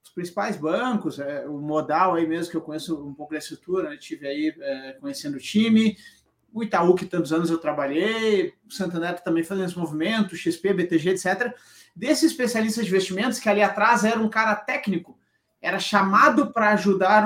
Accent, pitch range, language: Brazilian, 175-245 Hz, Portuguese